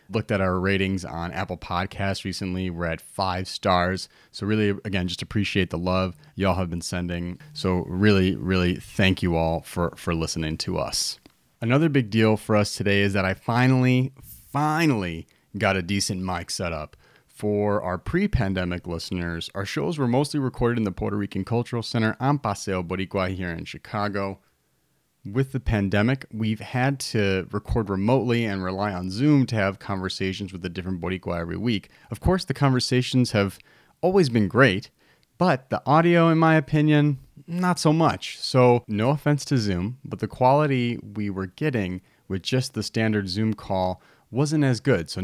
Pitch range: 95-125 Hz